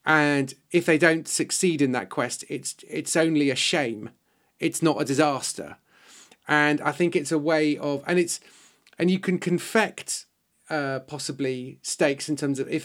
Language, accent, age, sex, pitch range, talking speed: English, British, 40-59, male, 140-165 Hz, 175 wpm